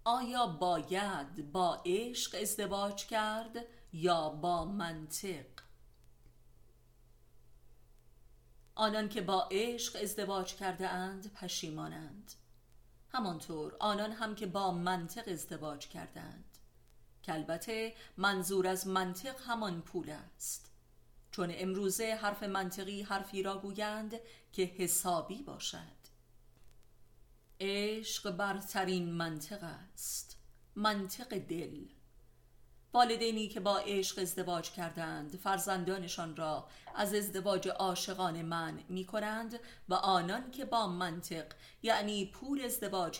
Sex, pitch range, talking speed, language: female, 170-210 Hz, 95 wpm, Persian